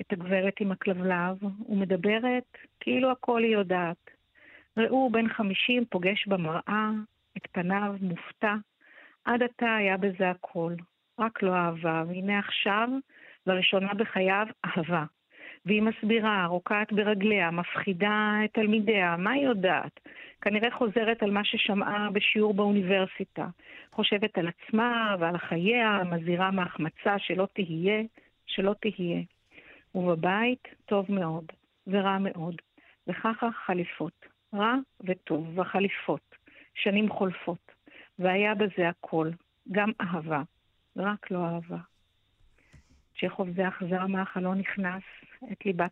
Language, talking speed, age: Hebrew, 110 wpm, 50-69